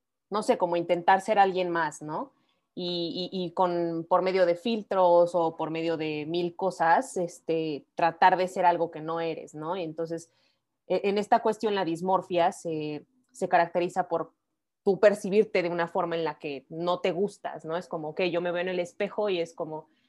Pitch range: 165-185 Hz